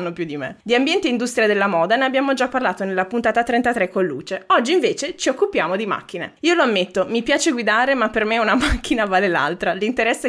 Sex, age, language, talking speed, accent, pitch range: female, 20-39, Italian, 220 wpm, native, 180-235 Hz